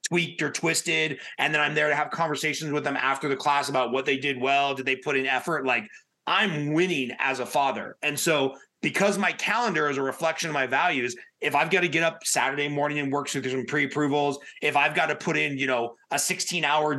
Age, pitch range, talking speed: 30-49, 140-175 Hz, 230 wpm